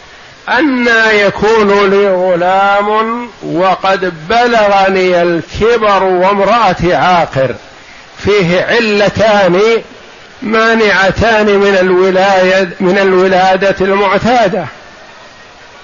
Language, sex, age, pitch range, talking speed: Arabic, male, 50-69, 175-215 Hz, 60 wpm